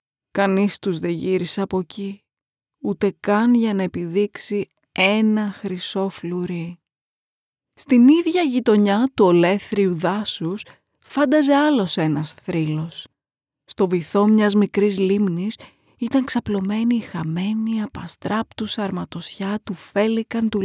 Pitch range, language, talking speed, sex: 190-240 Hz, Greek, 110 wpm, female